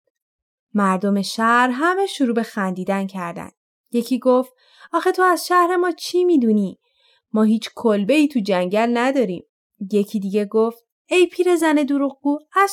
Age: 20-39